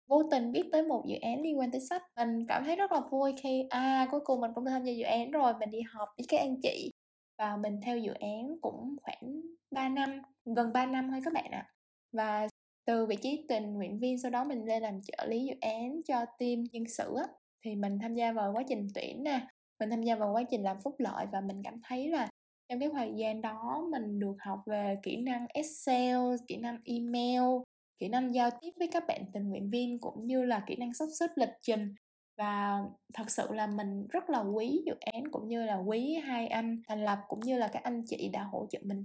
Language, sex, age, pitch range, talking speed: Vietnamese, female, 10-29, 220-275 Hz, 245 wpm